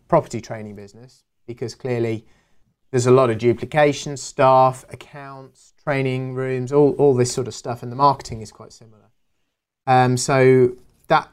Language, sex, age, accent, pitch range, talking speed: English, male, 30-49, British, 115-135 Hz, 155 wpm